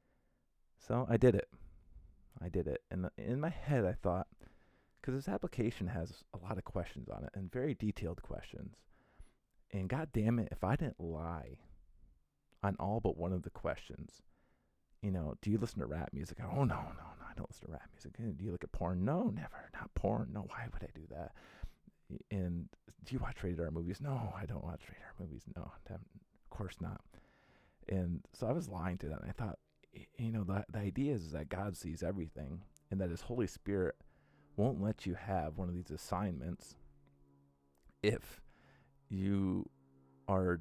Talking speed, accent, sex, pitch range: 195 wpm, American, male, 80-105 Hz